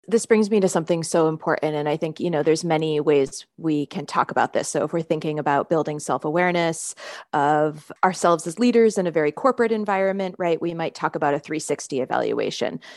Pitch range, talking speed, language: 155-200 Hz, 205 wpm, English